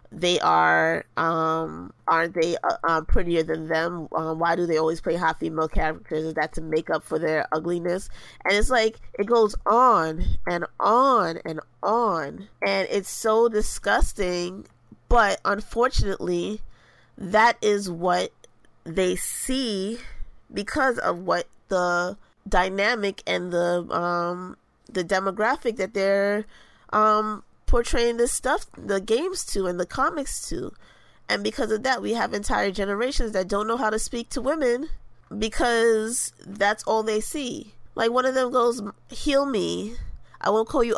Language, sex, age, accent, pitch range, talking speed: English, female, 20-39, American, 175-220 Hz, 150 wpm